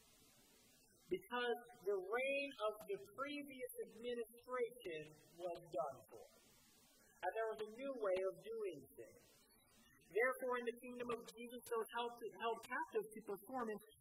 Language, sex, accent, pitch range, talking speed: English, male, American, 205-260 Hz, 130 wpm